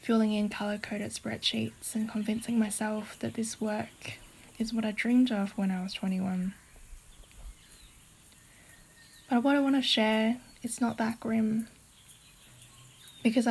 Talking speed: 135 wpm